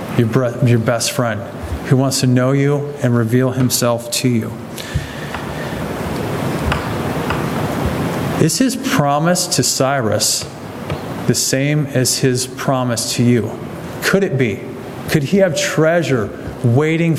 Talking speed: 115 wpm